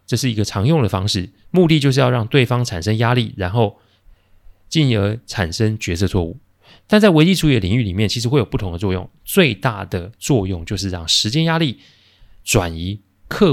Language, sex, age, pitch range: Chinese, male, 30-49, 95-135 Hz